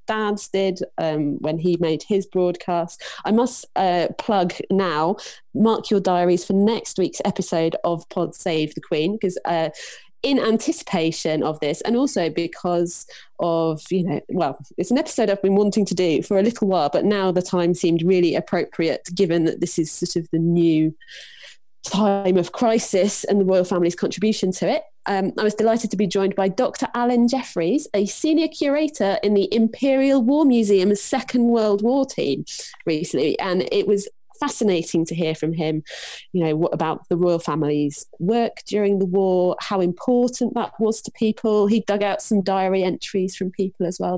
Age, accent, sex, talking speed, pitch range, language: 20-39, British, female, 180 wpm, 170-220 Hz, English